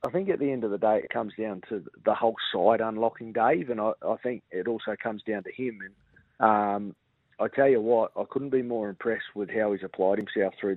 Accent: Australian